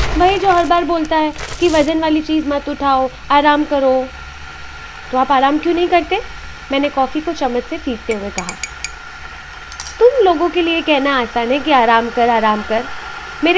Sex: female